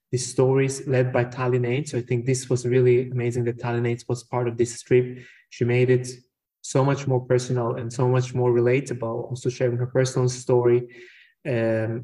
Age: 20-39